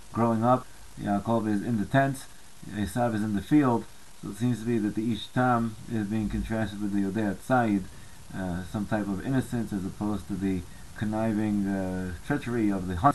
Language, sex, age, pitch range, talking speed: English, male, 30-49, 100-120 Hz, 190 wpm